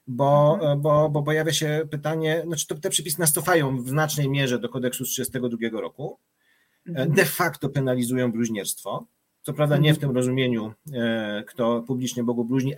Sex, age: male, 30-49